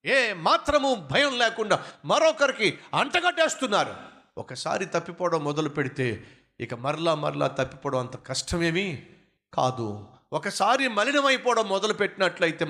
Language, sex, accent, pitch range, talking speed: Telugu, male, native, 125-185 Hz, 105 wpm